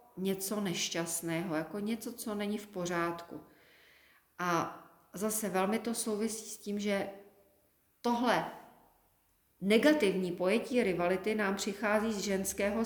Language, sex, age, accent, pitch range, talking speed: Czech, female, 40-59, native, 180-215 Hz, 110 wpm